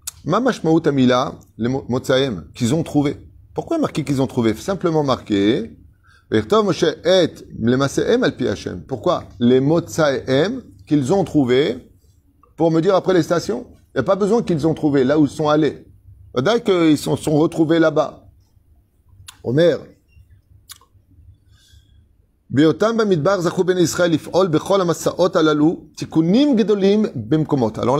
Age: 30-49